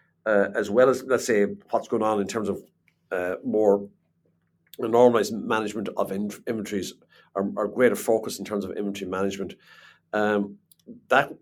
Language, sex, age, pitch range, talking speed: English, male, 50-69, 95-110 Hz, 150 wpm